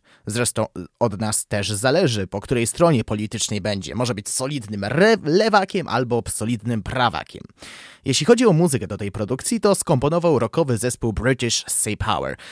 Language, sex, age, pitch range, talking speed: Polish, male, 20-39, 110-150 Hz, 150 wpm